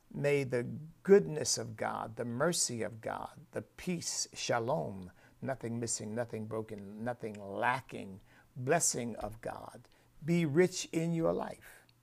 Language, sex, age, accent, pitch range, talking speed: English, male, 60-79, American, 115-140 Hz, 130 wpm